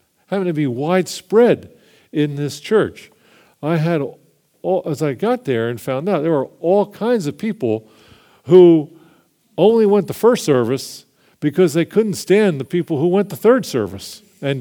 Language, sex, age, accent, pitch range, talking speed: English, male, 50-69, American, 125-185 Hz, 165 wpm